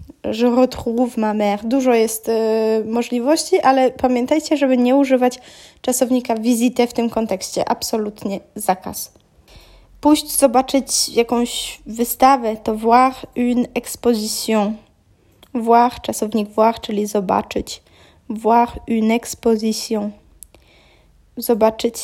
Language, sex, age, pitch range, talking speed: Polish, female, 10-29, 215-255 Hz, 100 wpm